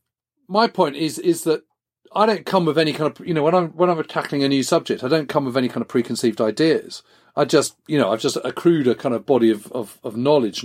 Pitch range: 120-170 Hz